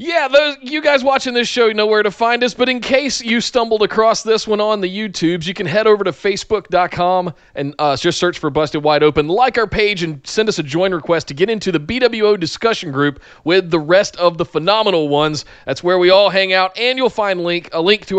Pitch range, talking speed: 155-215 Hz, 245 wpm